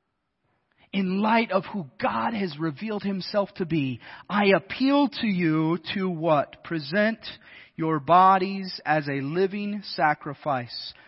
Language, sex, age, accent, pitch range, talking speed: English, male, 30-49, American, 185-260 Hz, 125 wpm